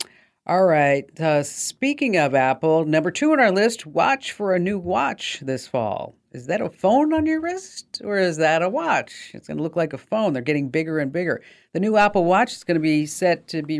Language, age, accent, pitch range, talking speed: English, 50-69, American, 135-175 Hz, 230 wpm